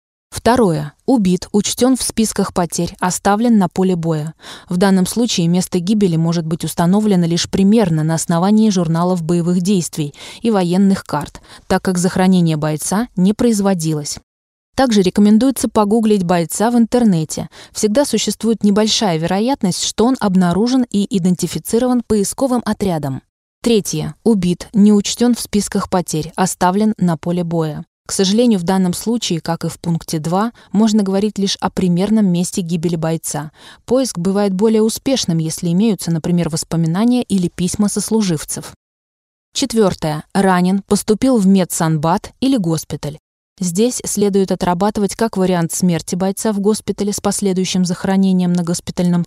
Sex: female